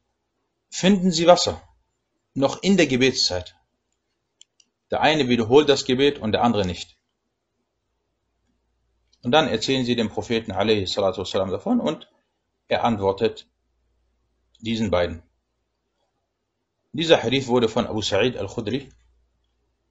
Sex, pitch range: male, 100-135 Hz